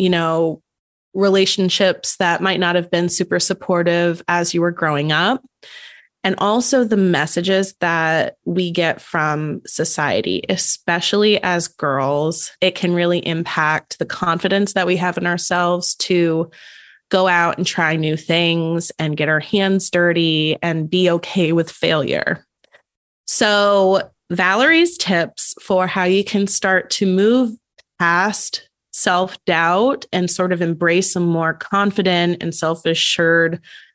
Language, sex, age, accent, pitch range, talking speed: English, female, 20-39, American, 170-200 Hz, 140 wpm